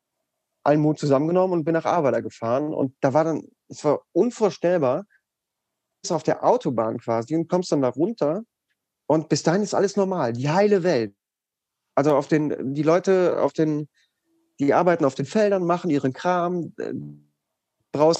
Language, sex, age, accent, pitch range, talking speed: German, male, 30-49, German, 135-175 Hz, 165 wpm